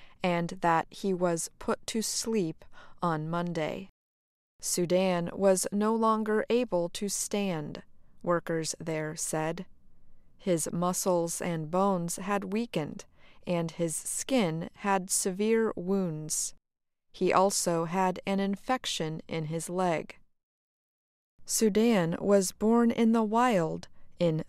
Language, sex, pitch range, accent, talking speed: English, female, 170-210 Hz, American, 115 wpm